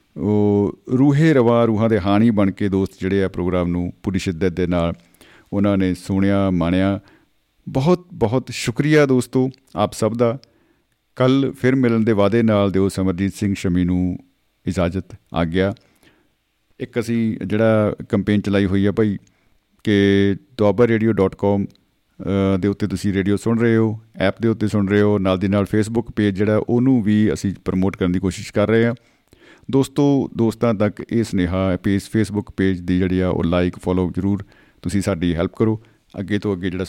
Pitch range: 95-115 Hz